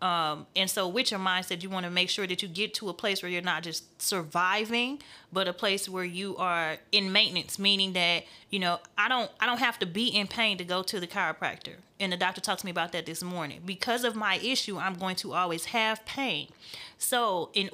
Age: 30-49